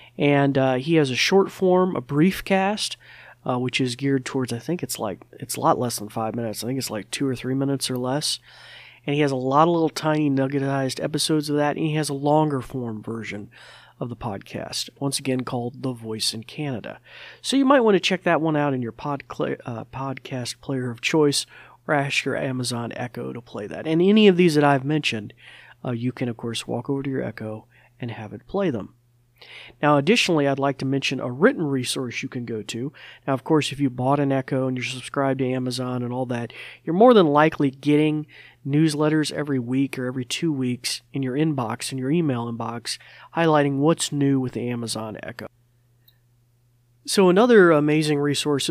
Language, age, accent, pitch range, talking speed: English, 40-59, American, 125-155 Hz, 210 wpm